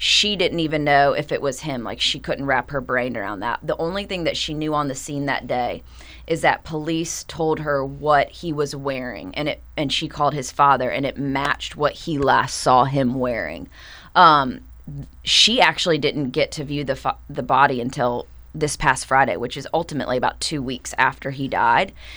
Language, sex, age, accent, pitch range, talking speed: English, female, 20-39, American, 135-155 Hz, 205 wpm